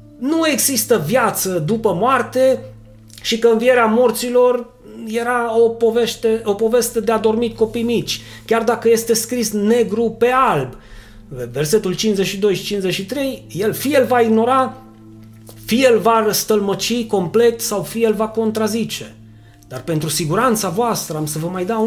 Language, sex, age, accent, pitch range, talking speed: Romanian, male, 30-49, native, 170-230 Hz, 145 wpm